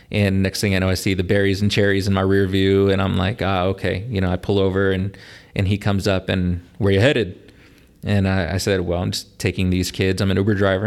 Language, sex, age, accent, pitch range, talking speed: English, male, 30-49, American, 95-110 Hz, 270 wpm